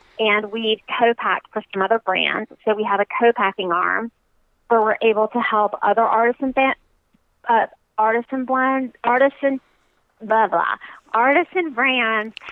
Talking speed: 145 wpm